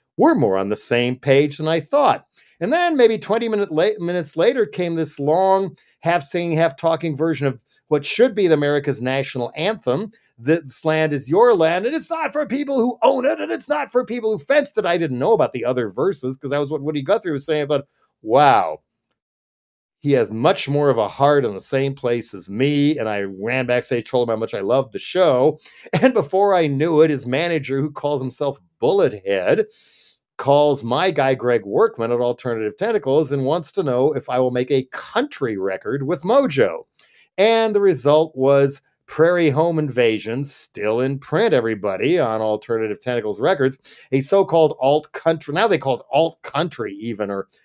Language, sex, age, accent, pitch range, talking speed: English, male, 50-69, American, 130-190 Hz, 195 wpm